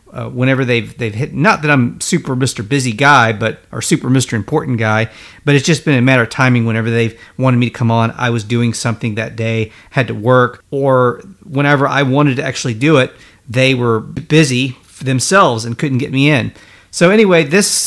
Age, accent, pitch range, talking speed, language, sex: 40-59, American, 120-150 Hz, 210 wpm, English, male